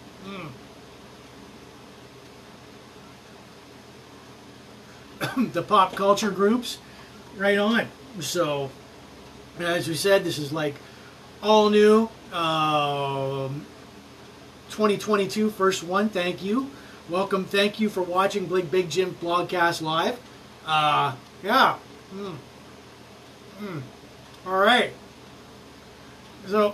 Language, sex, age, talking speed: English, male, 30-49, 85 wpm